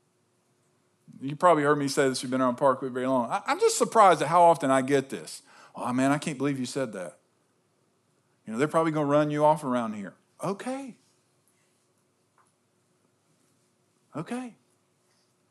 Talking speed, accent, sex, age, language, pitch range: 165 wpm, American, male, 40-59, English, 135-170 Hz